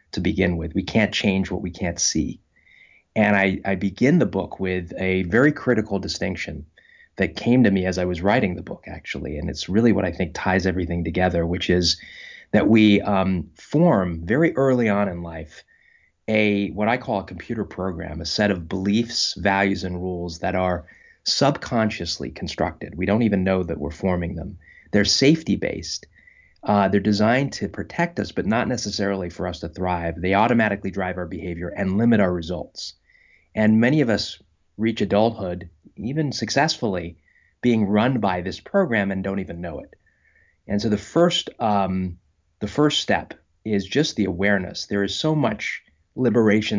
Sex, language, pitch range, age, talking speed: male, English, 90-105 Hz, 30-49, 175 wpm